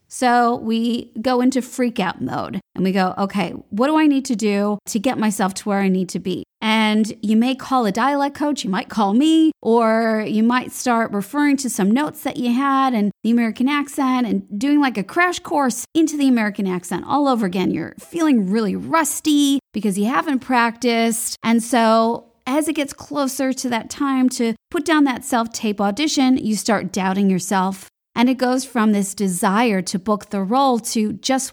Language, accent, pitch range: English, American, 200-270 Hz